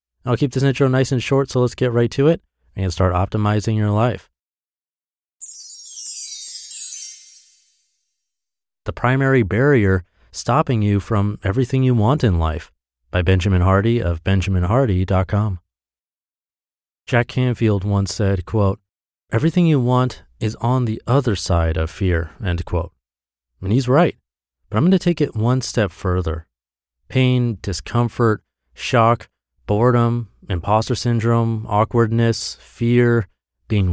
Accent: American